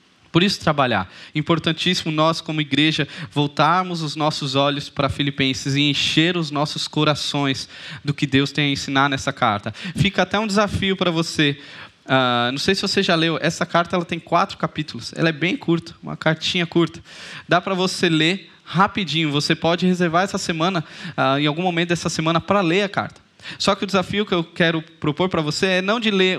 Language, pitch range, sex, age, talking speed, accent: Portuguese, 145-175 Hz, male, 20-39, 190 wpm, Brazilian